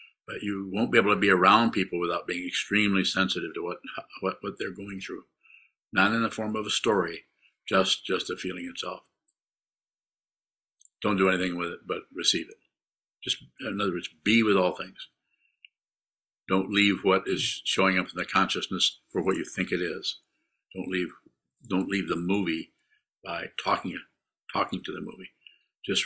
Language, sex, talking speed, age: English, male, 175 wpm, 50-69